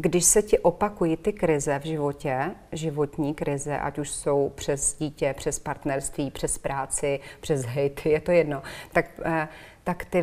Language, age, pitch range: Czech, 30-49, 150-175 Hz